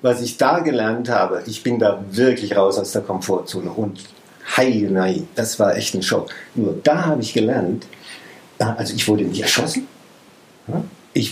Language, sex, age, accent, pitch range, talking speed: German, male, 50-69, German, 105-130 Hz, 160 wpm